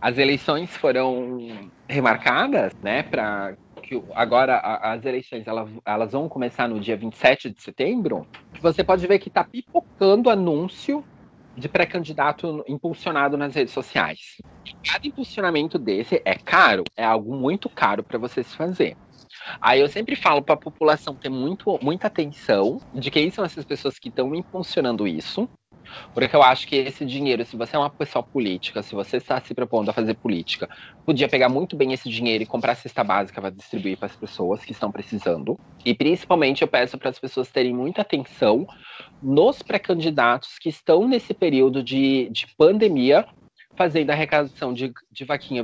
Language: English